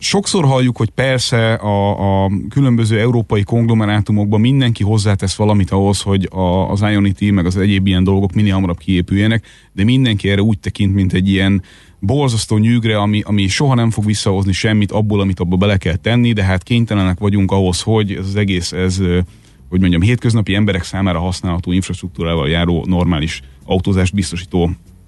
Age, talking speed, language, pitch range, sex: 30-49, 165 wpm, Hungarian, 90-115 Hz, male